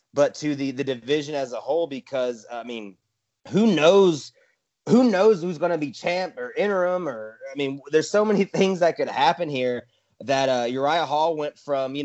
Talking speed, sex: 200 wpm, male